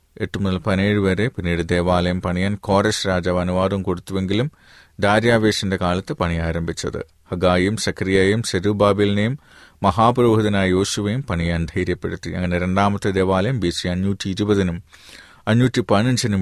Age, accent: 30-49, native